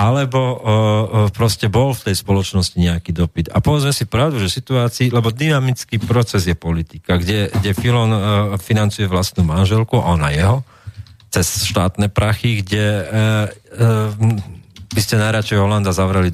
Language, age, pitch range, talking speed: Slovak, 40-59, 100-125 Hz, 145 wpm